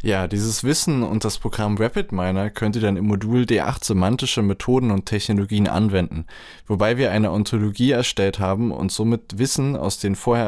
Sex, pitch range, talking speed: male, 95-120 Hz, 170 wpm